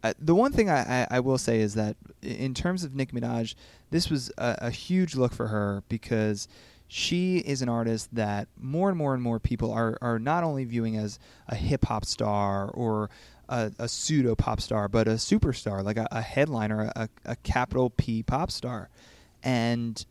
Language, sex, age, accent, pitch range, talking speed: English, male, 30-49, American, 110-135 Hz, 195 wpm